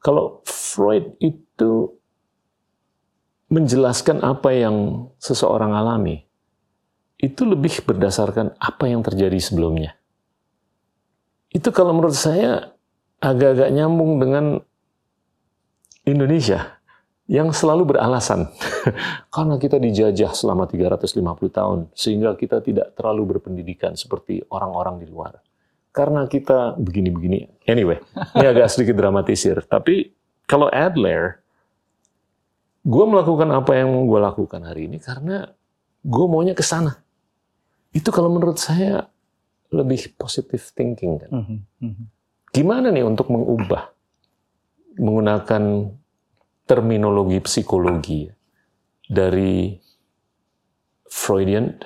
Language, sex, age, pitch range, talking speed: Indonesian, male, 40-59, 100-160 Hz, 95 wpm